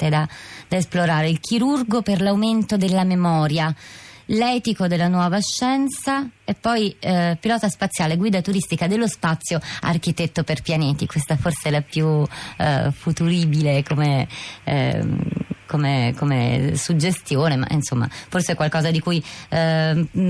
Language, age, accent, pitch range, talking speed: Italian, 30-49, native, 155-200 Hz, 135 wpm